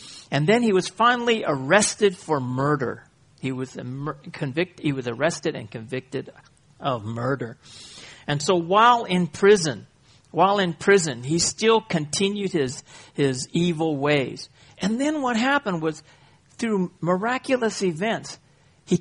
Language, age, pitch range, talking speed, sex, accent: English, 50-69, 135-190 Hz, 135 wpm, male, American